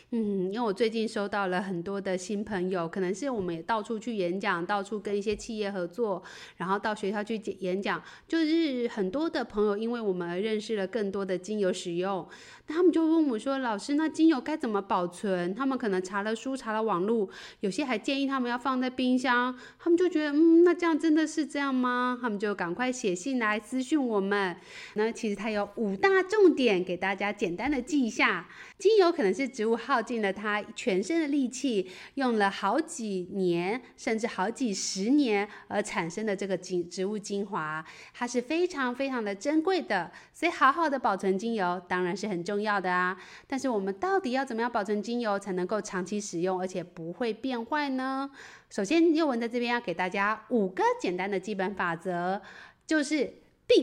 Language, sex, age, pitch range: Chinese, female, 20-39, 195-275 Hz